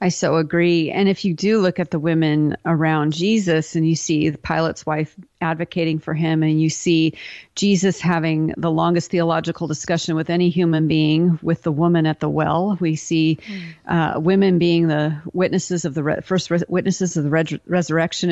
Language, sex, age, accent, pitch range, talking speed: English, female, 40-59, American, 160-180 Hz, 180 wpm